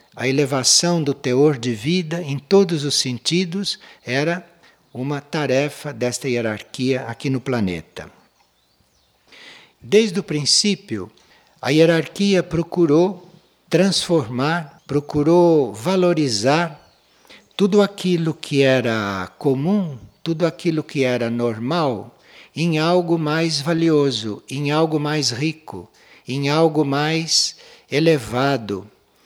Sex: male